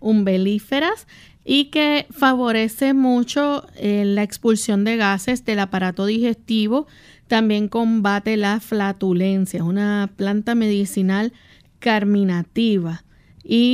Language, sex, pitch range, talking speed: Spanish, female, 195-230 Hz, 95 wpm